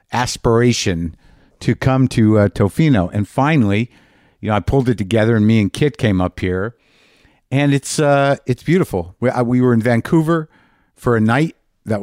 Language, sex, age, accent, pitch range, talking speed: English, male, 50-69, American, 100-125 Hz, 180 wpm